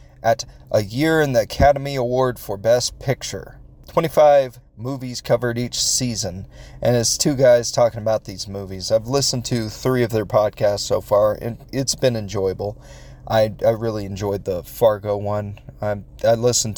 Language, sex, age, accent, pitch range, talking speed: English, male, 30-49, American, 110-135 Hz, 165 wpm